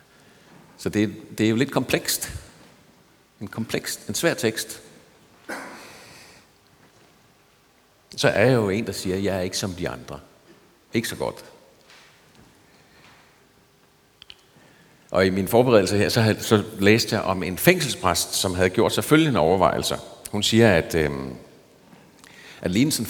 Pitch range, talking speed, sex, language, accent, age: 95-120 Hz, 140 wpm, male, Danish, native, 60-79